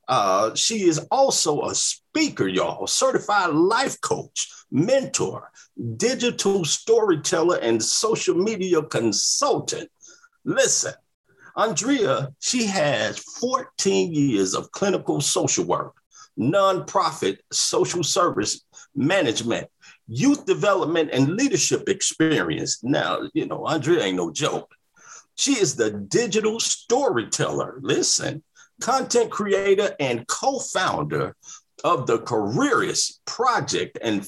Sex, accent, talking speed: male, American, 100 wpm